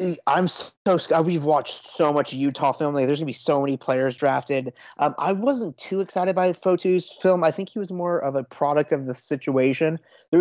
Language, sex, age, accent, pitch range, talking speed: English, male, 20-39, American, 135-160 Hz, 210 wpm